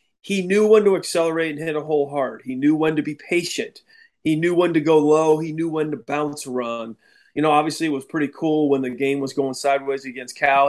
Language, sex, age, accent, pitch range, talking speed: English, male, 30-49, American, 135-165 Hz, 240 wpm